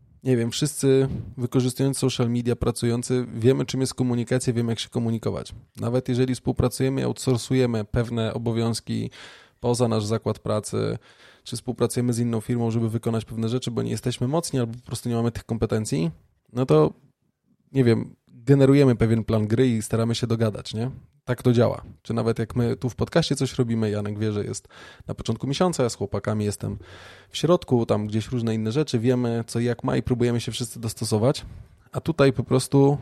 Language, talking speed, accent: Polish, 185 wpm, native